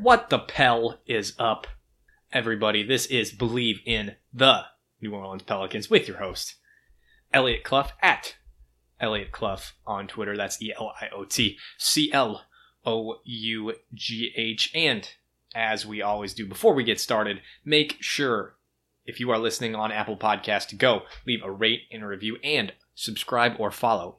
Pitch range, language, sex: 105-125 Hz, English, male